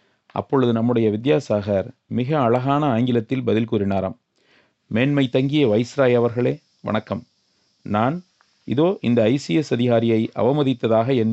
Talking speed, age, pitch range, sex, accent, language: 105 wpm, 40-59, 115-140 Hz, male, native, Tamil